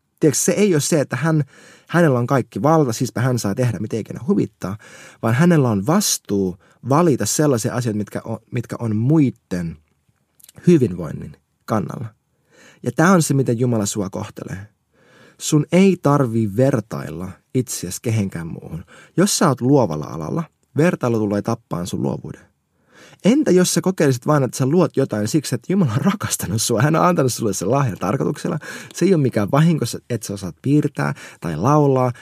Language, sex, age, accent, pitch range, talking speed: Finnish, male, 20-39, native, 115-170 Hz, 170 wpm